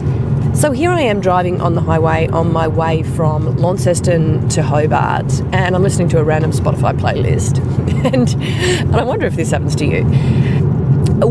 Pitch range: 125-145 Hz